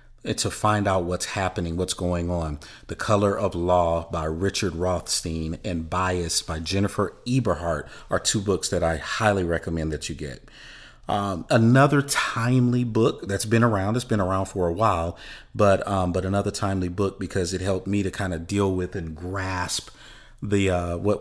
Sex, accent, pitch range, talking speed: male, American, 90-105 Hz, 180 wpm